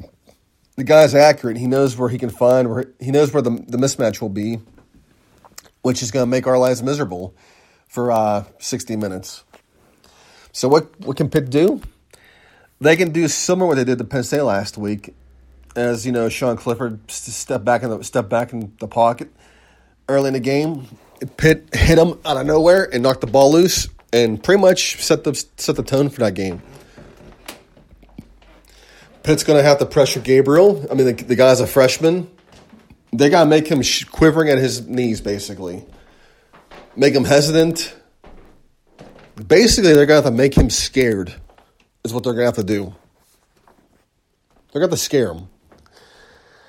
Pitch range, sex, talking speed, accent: 115-145 Hz, male, 180 wpm, American